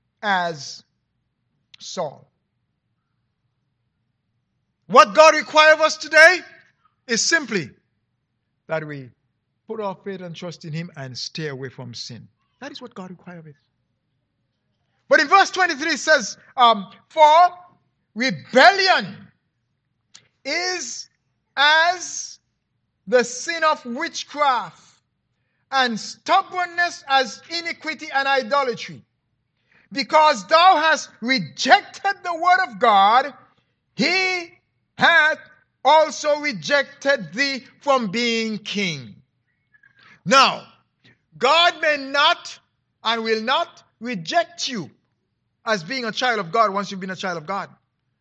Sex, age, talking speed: male, 50-69, 110 wpm